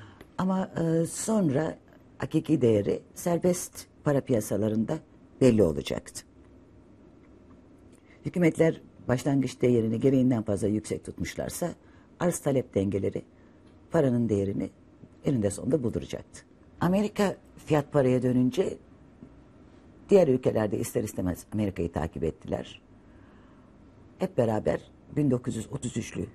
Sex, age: female, 60-79